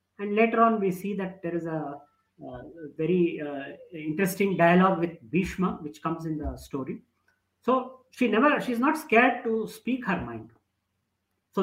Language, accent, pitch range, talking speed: Hindi, native, 165-230 Hz, 170 wpm